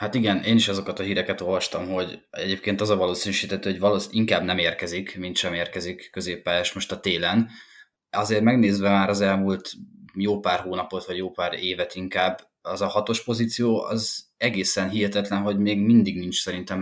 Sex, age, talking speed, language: male, 20-39, 180 wpm, Hungarian